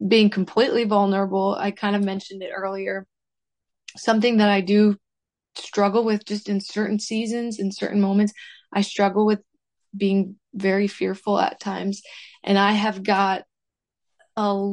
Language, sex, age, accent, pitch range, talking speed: English, female, 20-39, American, 195-215 Hz, 145 wpm